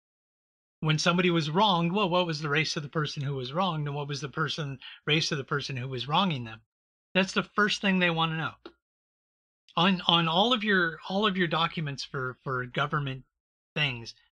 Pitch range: 135-175 Hz